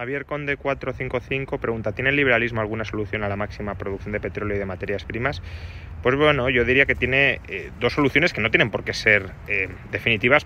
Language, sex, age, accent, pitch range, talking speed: Spanish, male, 20-39, Spanish, 100-120 Hz, 205 wpm